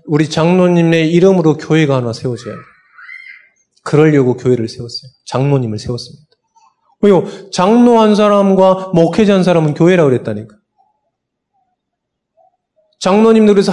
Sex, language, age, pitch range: male, Korean, 20-39, 145-210 Hz